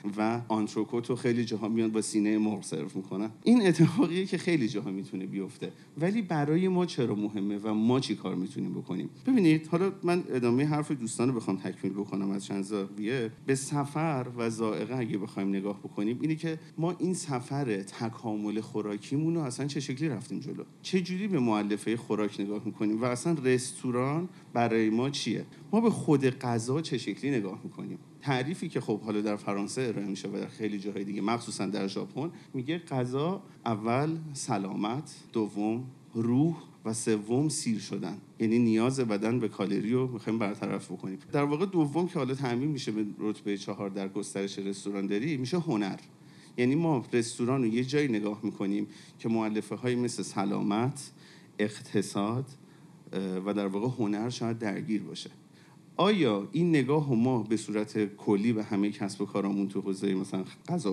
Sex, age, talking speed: male, 40-59, 165 wpm